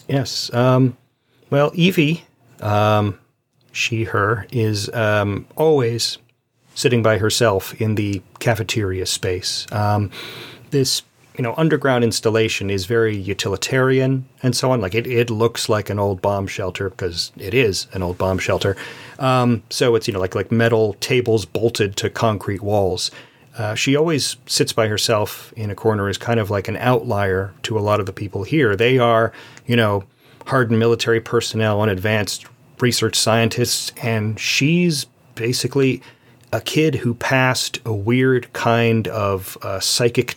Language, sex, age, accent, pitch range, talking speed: English, male, 30-49, American, 105-130 Hz, 155 wpm